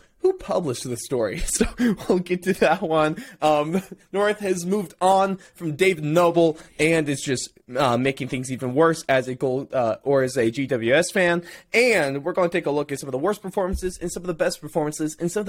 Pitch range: 130-175 Hz